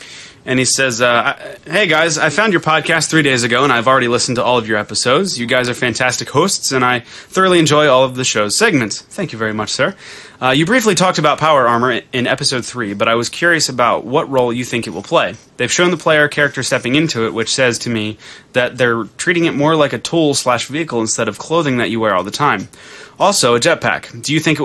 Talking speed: 245 wpm